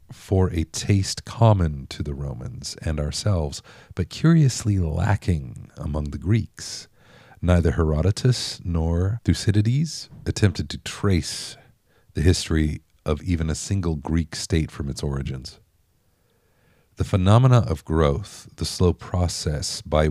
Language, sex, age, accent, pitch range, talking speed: English, male, 40-59, American, 80-115 Hz, 120 wpm